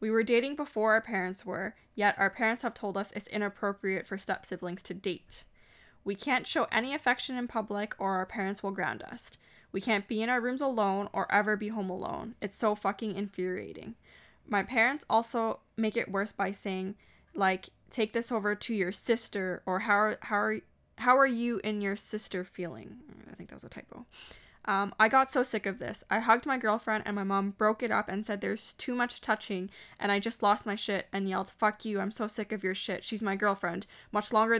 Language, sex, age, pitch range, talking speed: English, female, 10-29, 195-225 Hz, 215 wpm